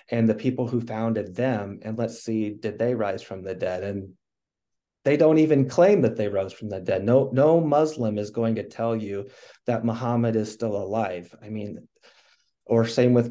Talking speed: 200 wpm